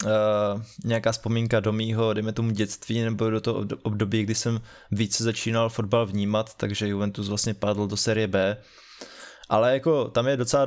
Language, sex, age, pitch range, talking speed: Czech, male, 20-39, 110-120 Hz, 170 wpm